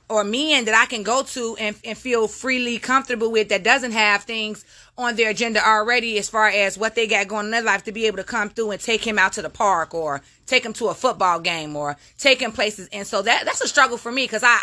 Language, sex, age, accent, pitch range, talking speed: English, female, 30-49, American, 210-255 Hz, 265 wpm